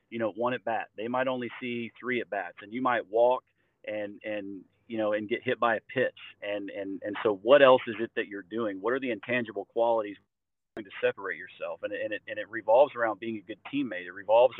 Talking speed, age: 240 wpm, 40-59